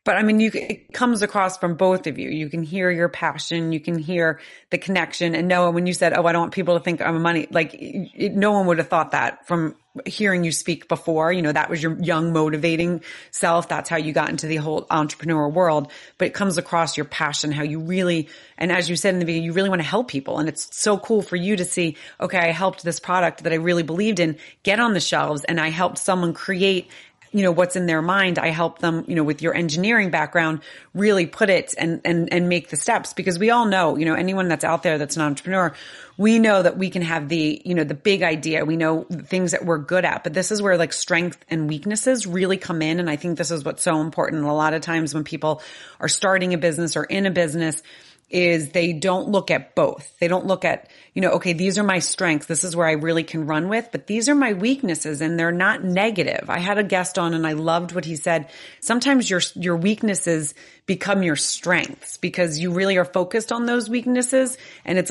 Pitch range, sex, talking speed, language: 160-190 Hz, female, 245 wpm, English